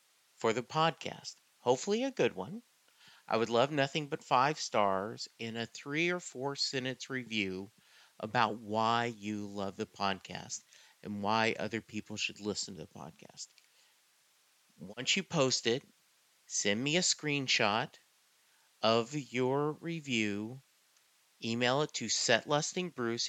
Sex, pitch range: male, 115-150 Hz